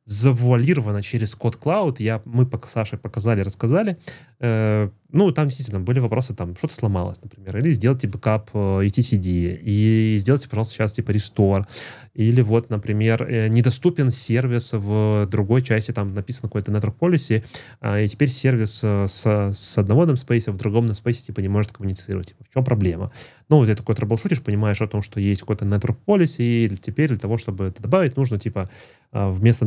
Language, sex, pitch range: Russian, male, 105-125 Hz